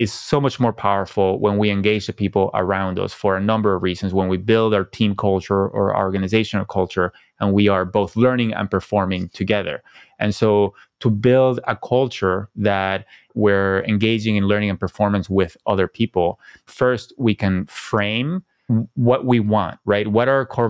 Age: 20-39